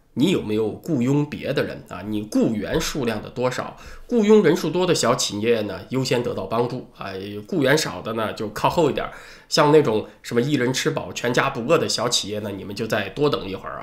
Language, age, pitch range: Chinese, 20-39, 110-155 Hz